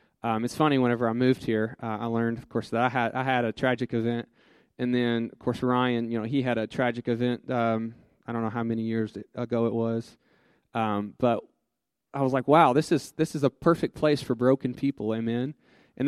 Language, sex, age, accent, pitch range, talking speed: English, male, 20-39, American, 120-150 Hz, 225 wpm